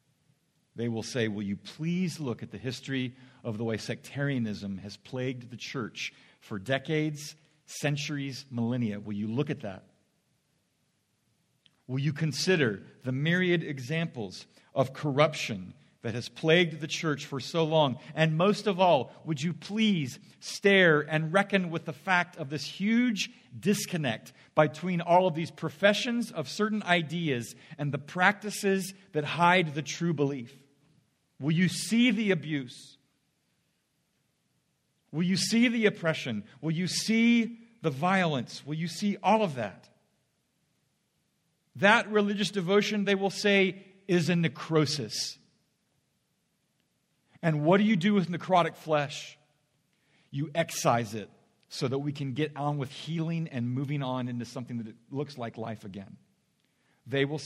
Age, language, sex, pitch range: 50-69, English, male, 130-180 Hz